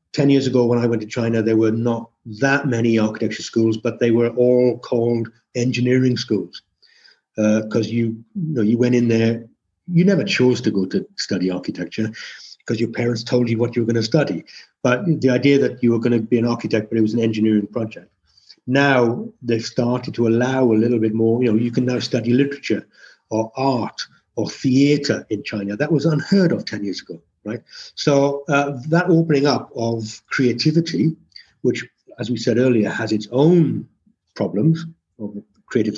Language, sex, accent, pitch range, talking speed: English, male, British, 110-130 Hz, 195 wpm